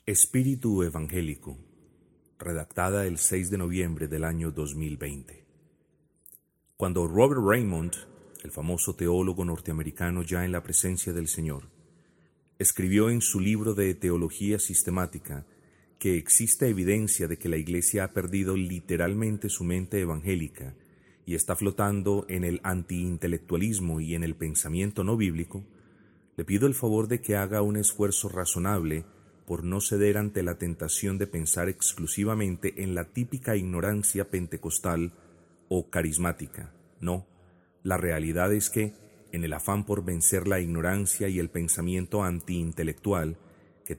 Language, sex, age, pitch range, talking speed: Spanish, male, 30-49, 85-100 Hz, 135 wpm